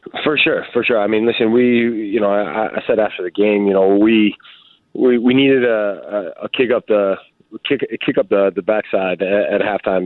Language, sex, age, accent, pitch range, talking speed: English, male, 20-39, American, 95-110 Hz, 215 wpm